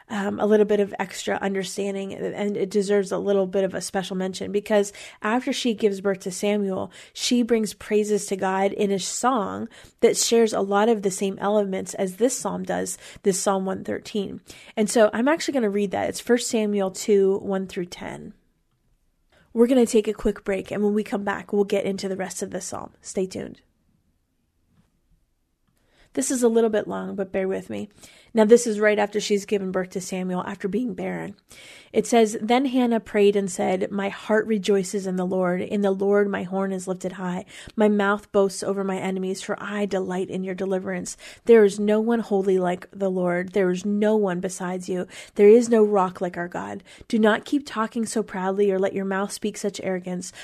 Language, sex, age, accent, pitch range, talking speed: English, female, 30-49, American, 190-215 Hz, 205 wpm